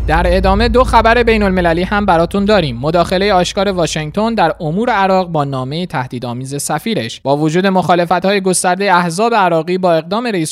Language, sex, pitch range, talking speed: Persian, male, 140-190 Hz, 155 wpm